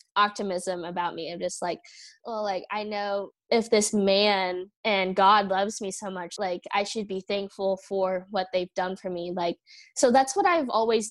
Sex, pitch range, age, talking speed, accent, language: female, 180-215 Hz, 10-29, 195 wpm, American, English